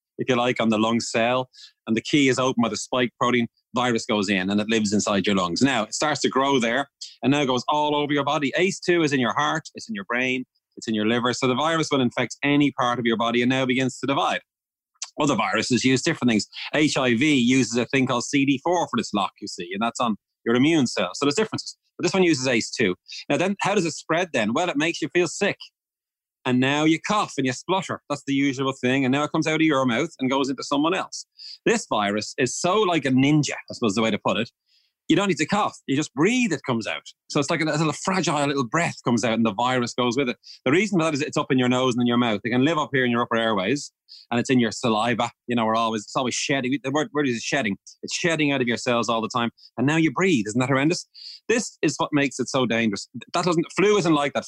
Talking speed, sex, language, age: 270 wpm, male, English, 30-49